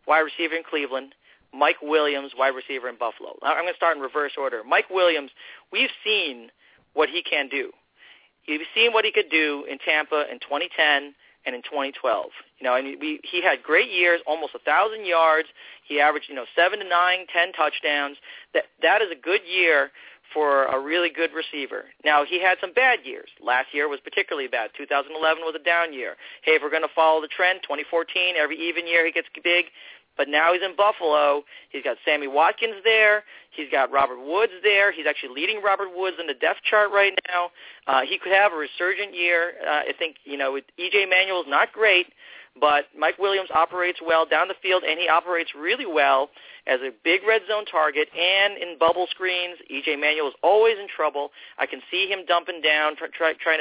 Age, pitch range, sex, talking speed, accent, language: 40-59, 150-195 Hz, male, 205 wpm, American, English